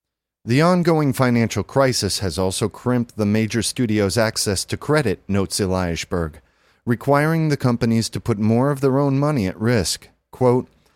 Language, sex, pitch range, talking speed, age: English, male, 100-130 Hz, 160 wpm, 40-59